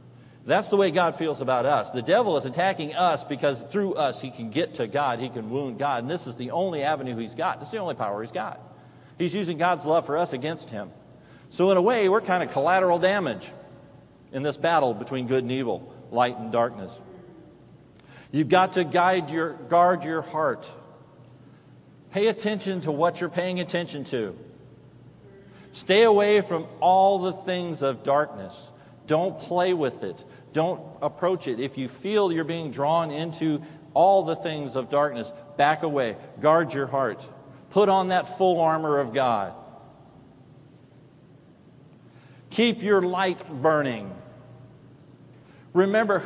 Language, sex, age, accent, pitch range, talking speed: English, male, 40-59, American, 135-180 Hz, 160 wpm